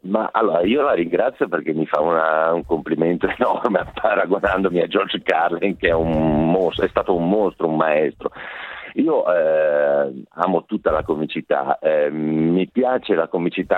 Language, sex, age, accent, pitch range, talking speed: Italian, male, 50-69, native, 75-110 Hz, 160 wpm